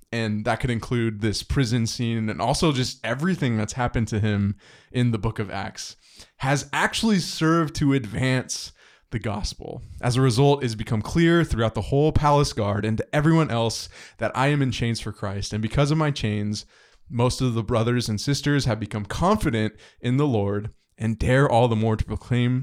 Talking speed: 195 wpm